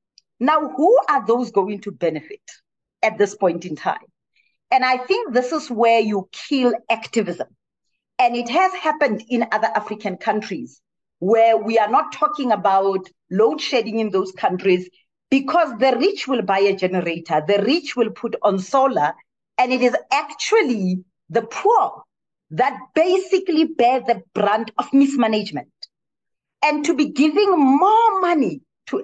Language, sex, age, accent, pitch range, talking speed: English, female, 40-59, South African, 215-305 Hz, 150 wpm